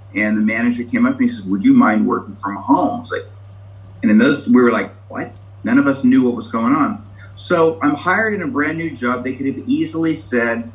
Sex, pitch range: male, 100-135 Hz